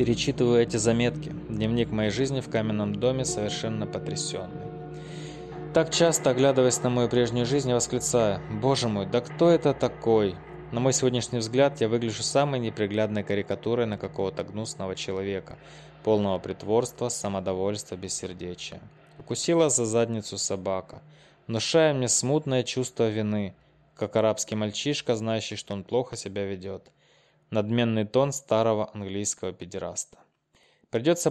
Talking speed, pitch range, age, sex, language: 130 wpm, 100-125 Hz, 20-39, male, Russian